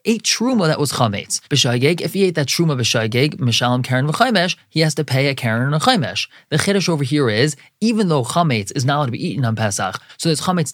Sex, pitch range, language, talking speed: male, 125-170 Hz, English, 220 wpm